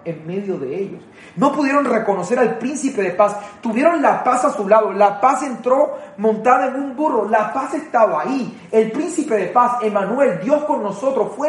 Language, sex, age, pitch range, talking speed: Spanish, male, 30-49, 205-255 Hz, 195 wpm